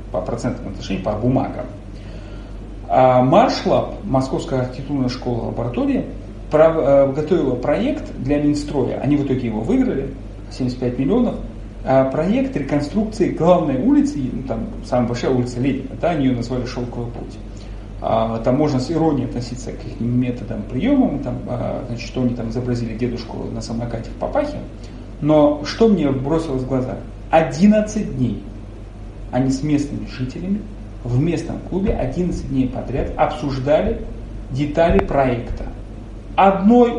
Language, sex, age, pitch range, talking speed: Russian, male, 30-49, 115-175 Hz, 130 wpm